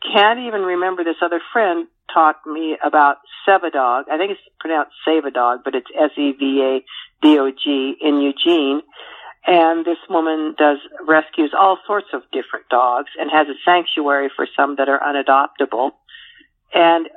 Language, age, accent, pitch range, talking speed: English, 50-69, American, 140-175 Hz, 150 wpm